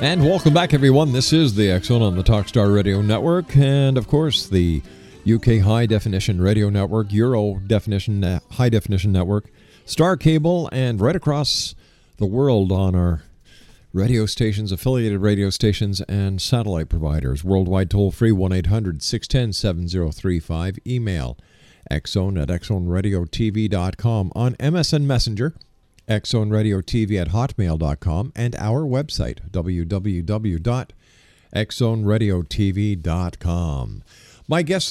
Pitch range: 95-135 Hz